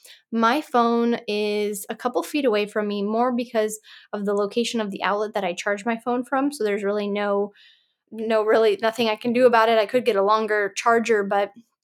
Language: English